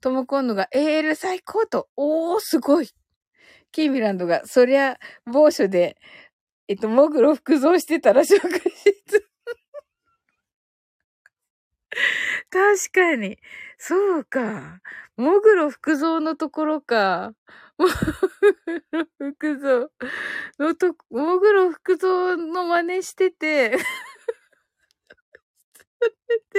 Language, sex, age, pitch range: Japanese, female, 20-39, 265-385 Hz